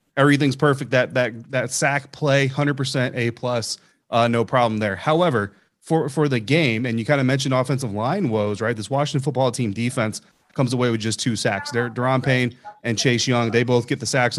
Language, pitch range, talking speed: English, 115-140 Hz, 200 wpm